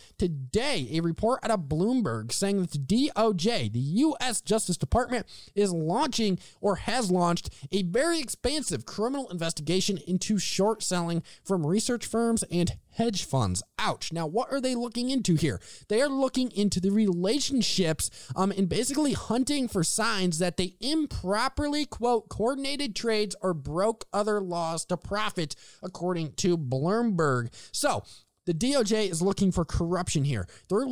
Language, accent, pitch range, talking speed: English, American, 175-230 Hz, 150 wpm